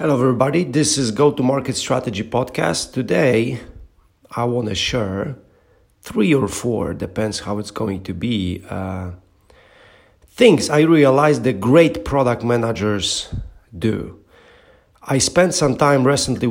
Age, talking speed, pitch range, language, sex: 40-59, 125 wpm, 110-135 Hz, English, male